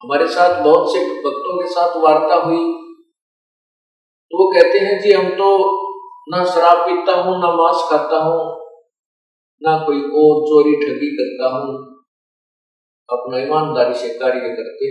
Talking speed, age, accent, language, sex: 145 wpm, 50-69, native, Hindi, male